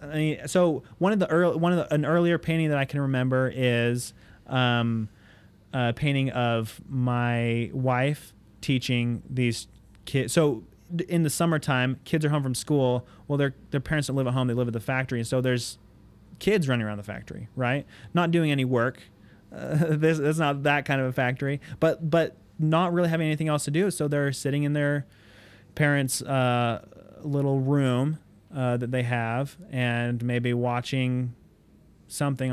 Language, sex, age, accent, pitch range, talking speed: English, male, 30-49, American, 120-145 Hz, 180 wpm